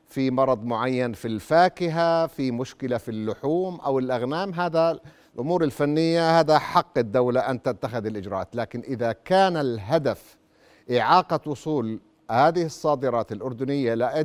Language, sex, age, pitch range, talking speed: Arabic, male, 50-69, 110-155 Hz, 125 wpm